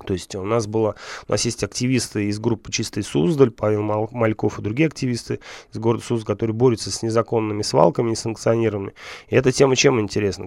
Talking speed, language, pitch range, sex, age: 170 wpm, Russian, 105-125 Hz, male, 20-39